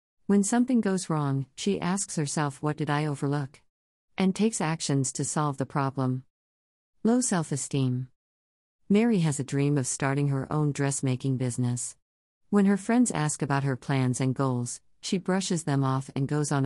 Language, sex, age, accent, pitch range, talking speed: English, female, 50-69, American, 130-160 Hz, 165 wpm